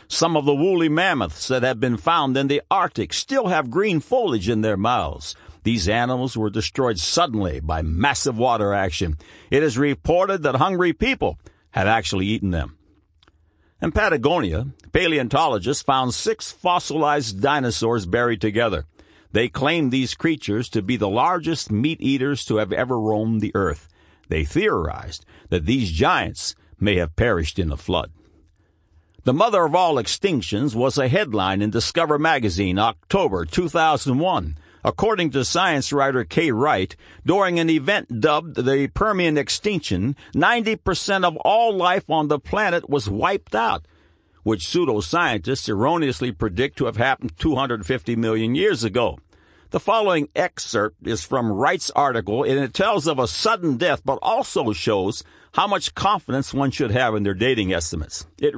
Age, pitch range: 60-79, 95-145 Hz